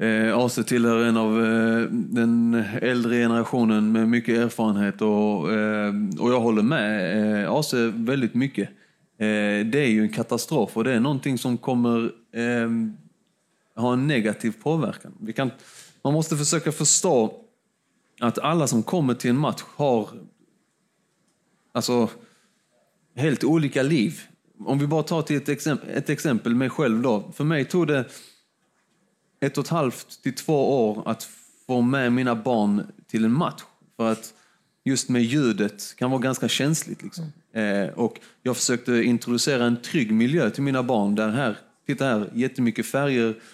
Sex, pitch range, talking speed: male, 115-140 Hz, 155 wpm